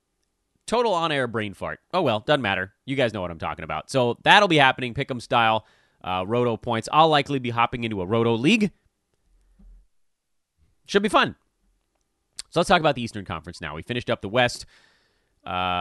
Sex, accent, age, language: male, American, 30-49, English